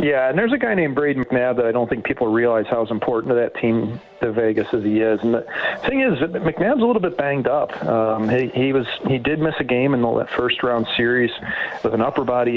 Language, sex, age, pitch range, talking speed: English, male, 40-59, 115-150 Hz, 245 wpm